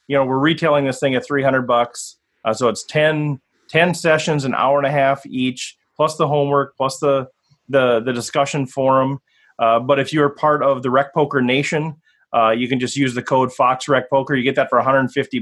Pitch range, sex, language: 125-150 Hz, male, English